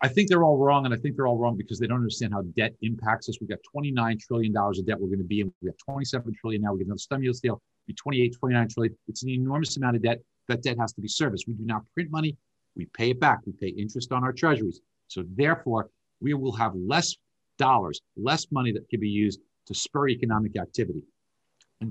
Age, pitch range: 50-69, 110-150 Hz